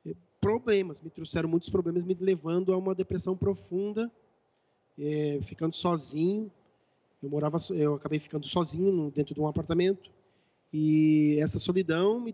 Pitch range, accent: 155-190 Hz, Brazilian